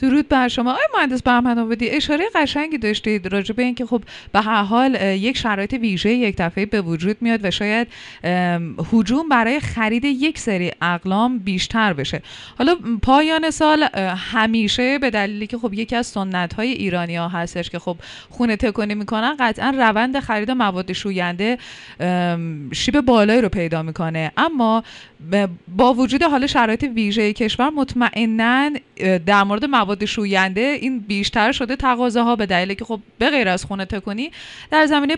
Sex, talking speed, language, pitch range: female, 155 wpm, Persian, 195-260 Hz